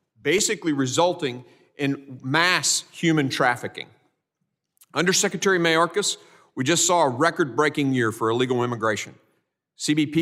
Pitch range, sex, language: 140-170 Hz, male, English